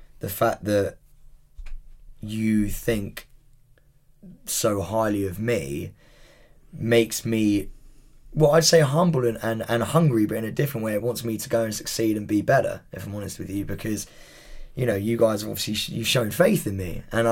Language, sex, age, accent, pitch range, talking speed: English, male, 20-39, British, 95-115 Hz, 180 wpm